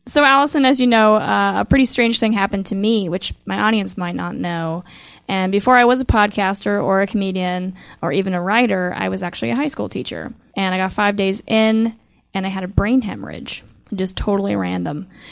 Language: English